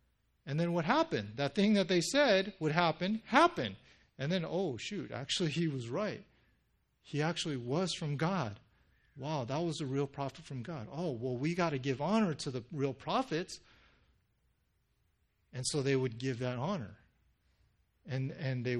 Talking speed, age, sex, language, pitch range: 170 wpm, 40-59, male, English, 110-155 Hz